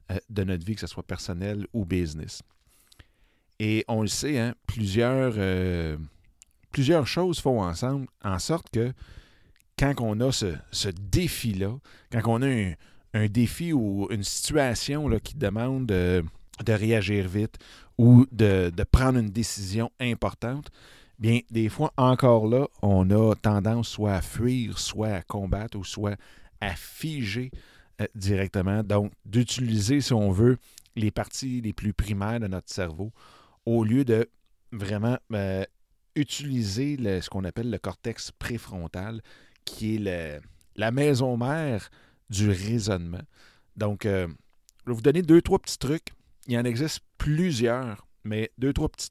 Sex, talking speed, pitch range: male, 150 wpm, 95-120 Hz